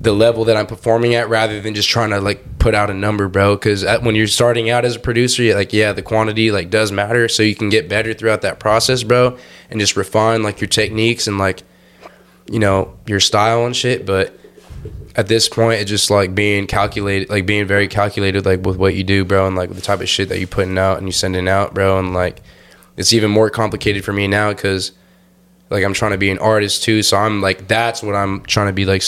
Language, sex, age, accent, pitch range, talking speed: English, male, 10-29, American, 95-110 Hz, 245 wpm